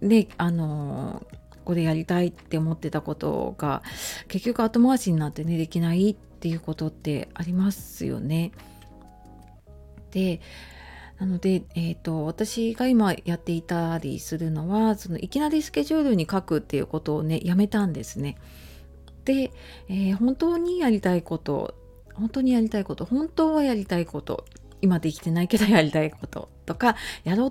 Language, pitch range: Japanese, 160-225 Hz